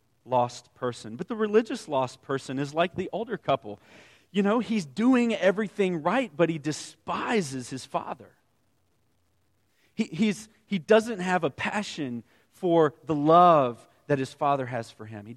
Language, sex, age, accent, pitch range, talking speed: English, male, 40-59, American, 130-185 Hz, 155 wpm